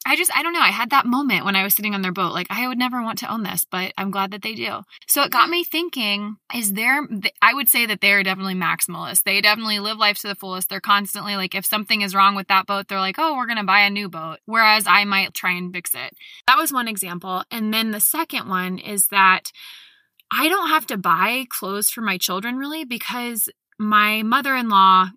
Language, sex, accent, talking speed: English, female, American, 250 wpm